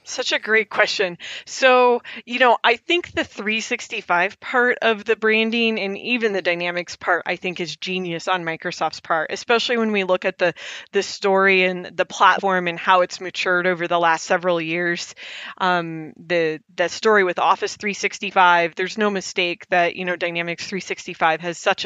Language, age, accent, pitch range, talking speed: English, 20-39, American, 175-220 Hz, 175 wpm